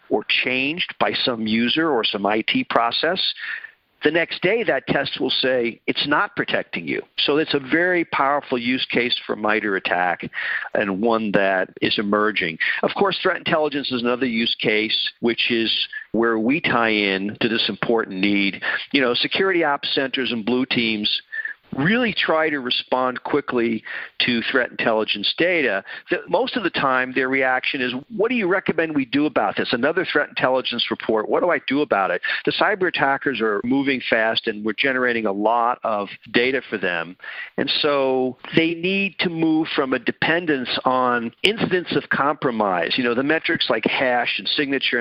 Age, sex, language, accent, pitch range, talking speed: 50-69, male, English, American, 115-155 Hz, 175 wpm